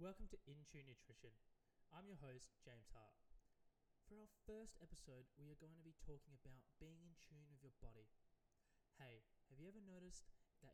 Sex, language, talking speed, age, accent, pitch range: male, English, 185 wpm, 20-39, Australian, 125-170 Hz